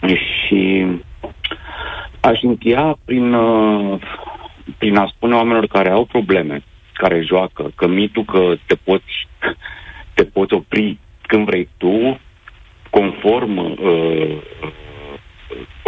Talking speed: 100 wpm